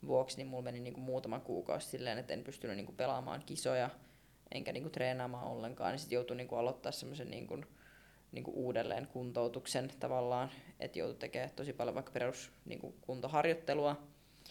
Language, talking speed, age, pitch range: Finnish, 125 wpm, 20-39, 125-140 Hz